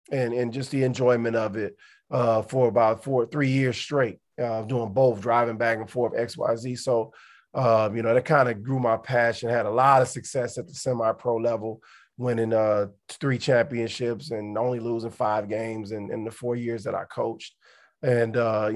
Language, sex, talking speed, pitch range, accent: English, male, 200 wpm, 115-130 Hz, American